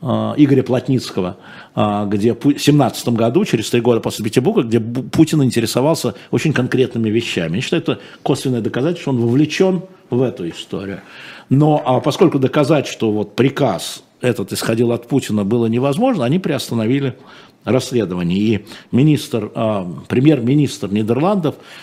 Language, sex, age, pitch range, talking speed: Russian, male, 50-69, 110-145 Hz, 130 wpm